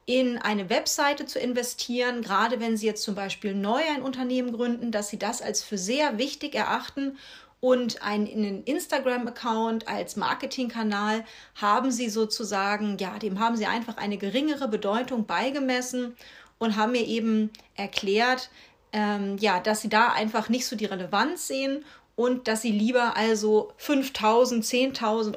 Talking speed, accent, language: 145 wpm, German, German